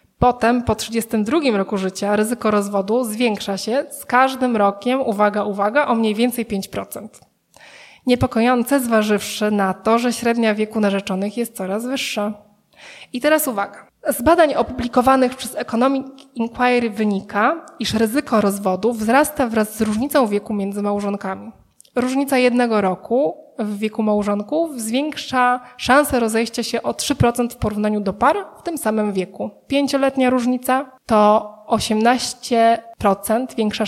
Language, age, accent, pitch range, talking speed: Polish, 20-39, native, 210-255 Hz, 130 wpm